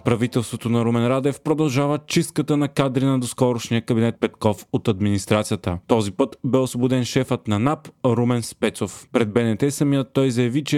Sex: male